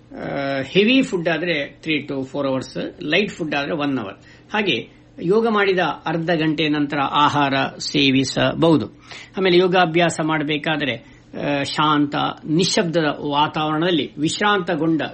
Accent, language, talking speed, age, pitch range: native, Kannada, 105 wpm, 60-79, 145-180 Hz